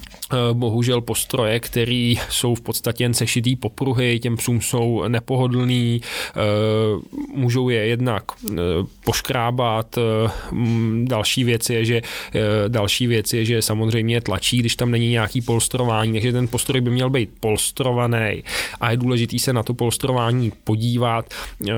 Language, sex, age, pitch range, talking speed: Czech, male, 20-39, 110-125 Hz, 130 wpm